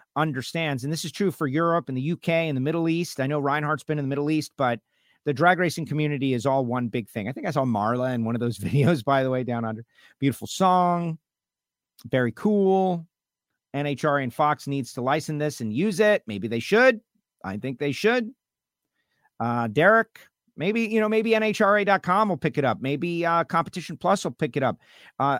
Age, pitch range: 50-69, 120-165 Hz